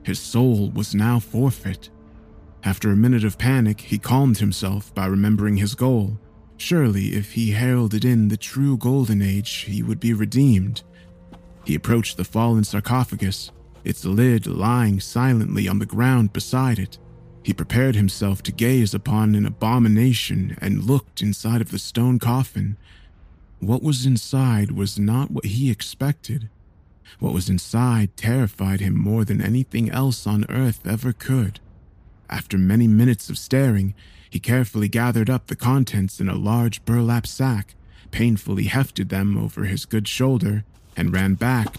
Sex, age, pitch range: male, 30-49, 95-120 Hz